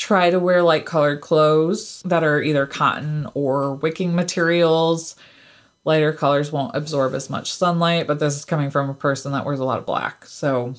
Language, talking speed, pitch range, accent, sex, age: English, 190 wpm, 150-195 Hz, American, female, 20-39